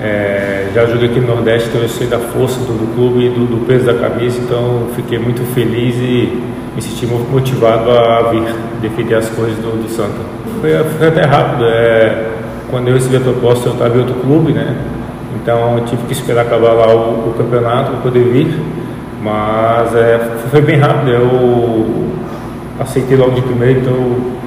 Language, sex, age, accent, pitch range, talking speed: Portuguese, male, 20-39, Brazilian, 115-130 Hz, 190 wpm